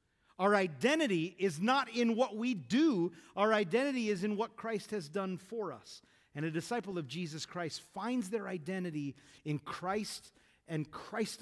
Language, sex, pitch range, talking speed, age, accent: English, male, 190-265 Hz, 165 wpm, 40-59, American